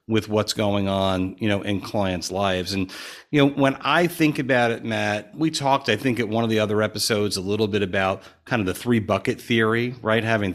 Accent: American